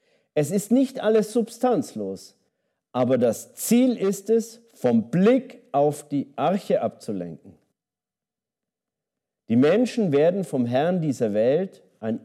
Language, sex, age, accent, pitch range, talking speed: German, male, 50-69, German, 125-210 Hz, 120 wpm